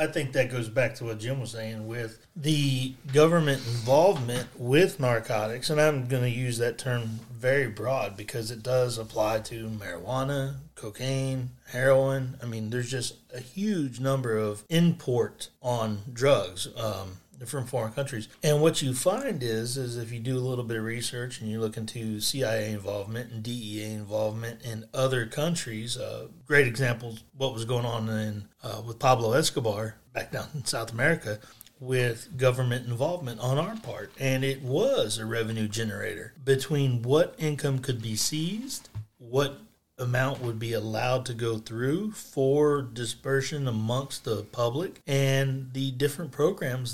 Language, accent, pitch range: English, American, 115-140 Hz